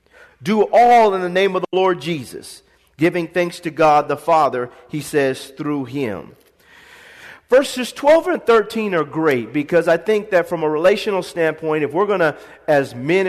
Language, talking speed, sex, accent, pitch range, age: English, 175 wpm, male, American, 155-200 Hz, 40-59